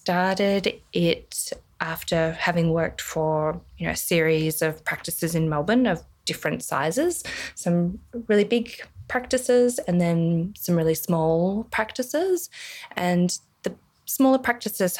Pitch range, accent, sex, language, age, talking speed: 155-195 Hz, Australian, female, English, 20-39, 125 wpm